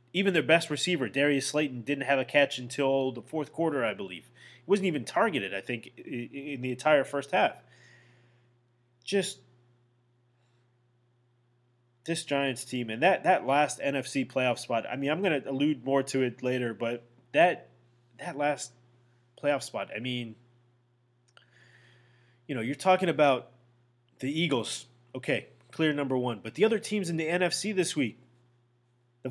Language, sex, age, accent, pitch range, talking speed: English, male, 20-39, American, 120-150 Hz, 160 wpm